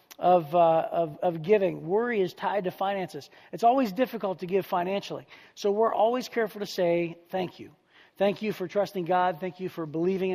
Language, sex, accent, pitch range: English, male, American, 180-220 Hz